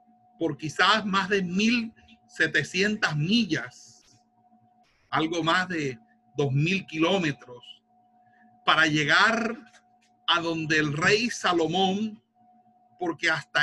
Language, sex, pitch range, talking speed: Spanish, male, 155-240 Hz, 95 wpm